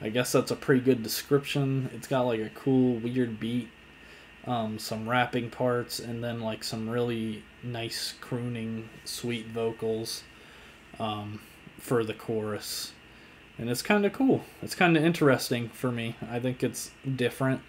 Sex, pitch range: male, 110-130 Hz